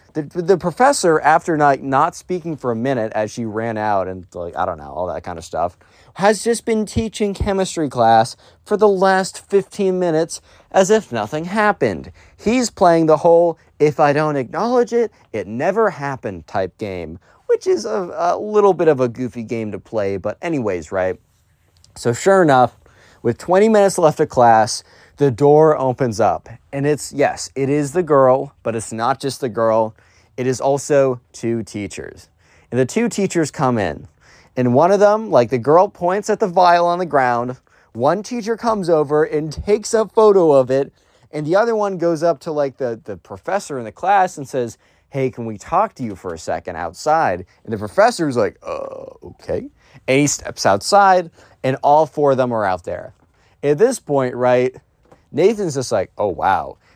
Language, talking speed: English, 195 wpm